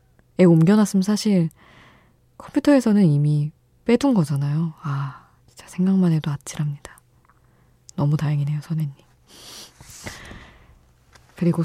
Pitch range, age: 145-185 Hz, 20-39